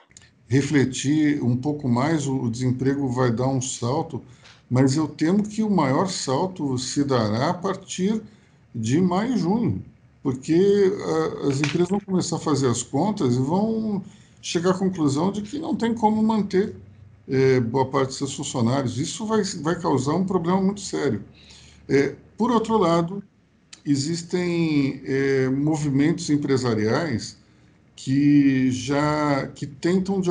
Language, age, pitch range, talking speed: Portuguese, 50-69, 125-160 Hz, 145 wpm